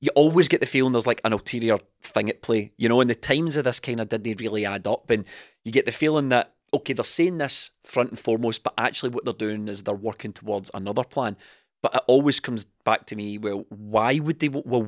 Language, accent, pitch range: English, British, 105-130 Hz